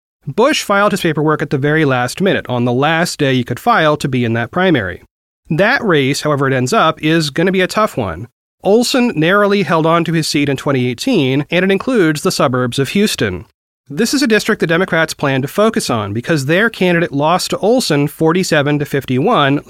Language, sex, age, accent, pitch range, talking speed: English, male, 30-49, American, 135-195 Hz, 205 wpm